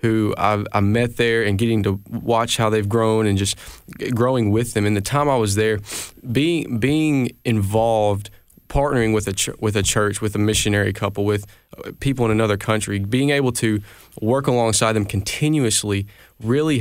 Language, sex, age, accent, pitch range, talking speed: English, male, 20-39, American, 105-120 Hz, 180 wpm